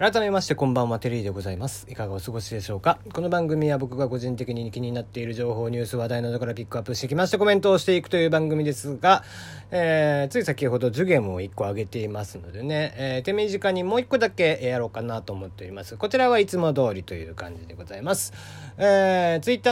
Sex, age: male, 40-59